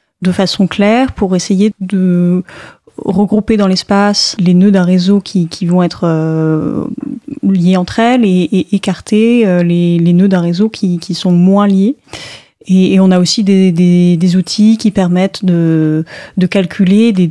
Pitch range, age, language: 185-220 Hz, 30-49, French